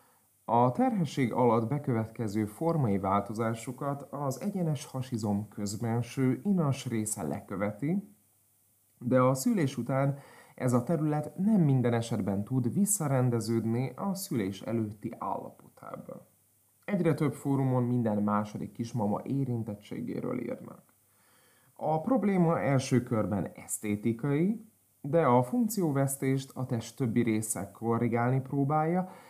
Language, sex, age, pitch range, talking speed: Hungarian, male, 30-49, 110-145 Hz, 105 wpm